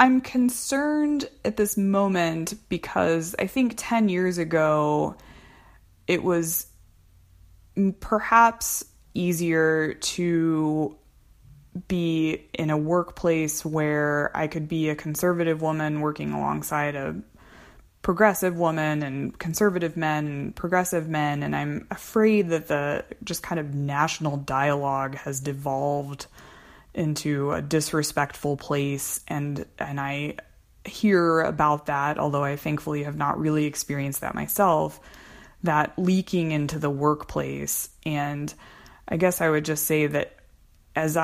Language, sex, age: English, female, 20-39